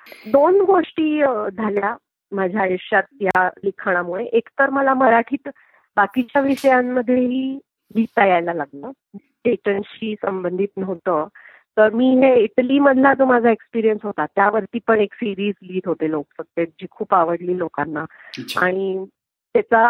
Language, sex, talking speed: Marathi, female, 115 wpm